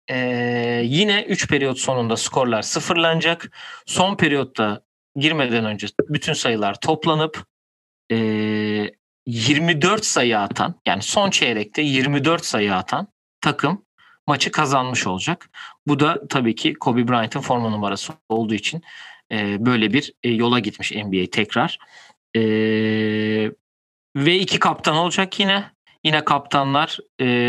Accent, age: native, 40-59